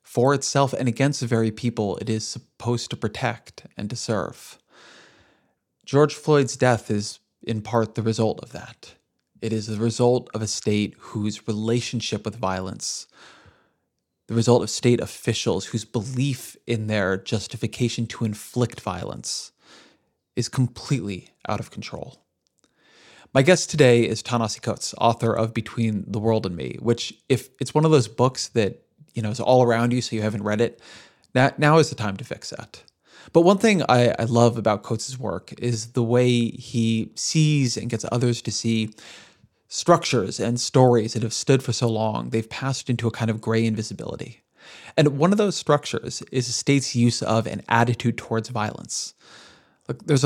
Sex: male